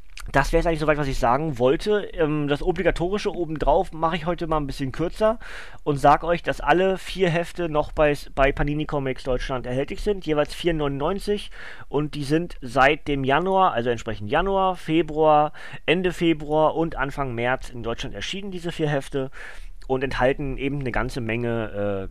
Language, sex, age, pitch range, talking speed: German, male, 30-49, 120-160 Hz, 175 wpm